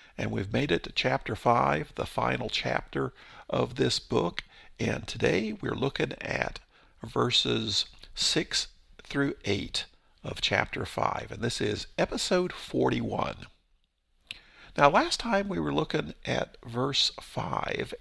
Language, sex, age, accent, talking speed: English, male, 50-69, American, 130 wpm